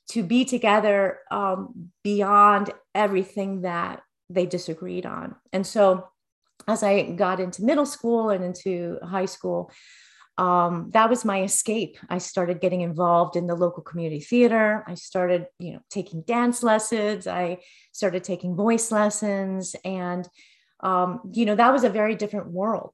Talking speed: 150 wpm